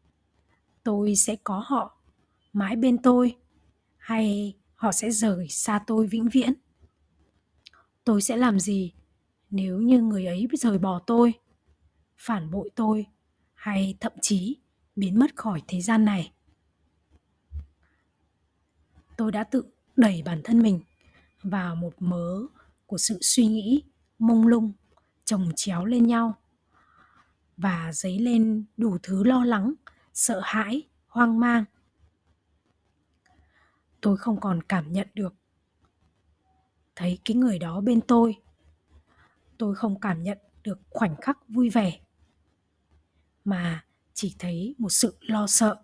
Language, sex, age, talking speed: Vietnamese, female, 20-39, 125 wpm